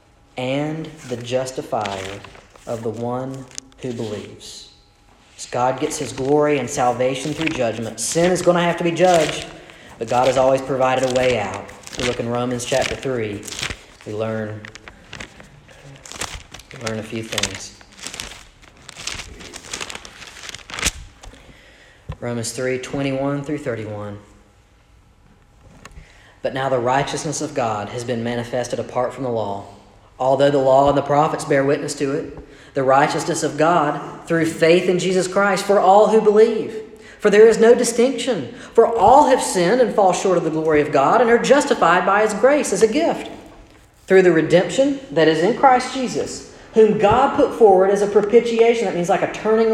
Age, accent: 40-59, American